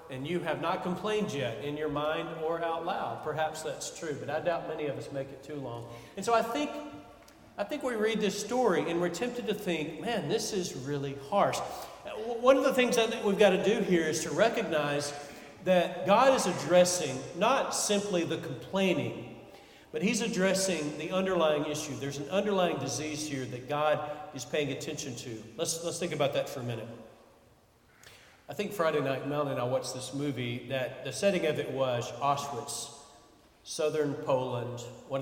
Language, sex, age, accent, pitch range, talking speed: English, male, 40-59, American, 125-175 Hz, 190 wpm